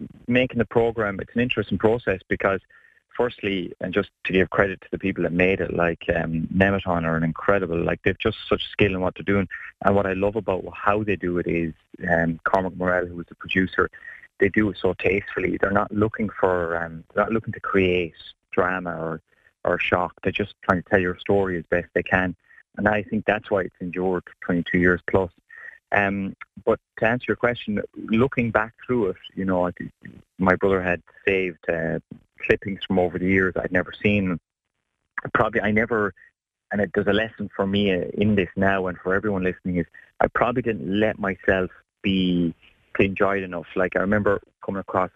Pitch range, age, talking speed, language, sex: 90-100 Hz, 30-49, 200 wpm, English, male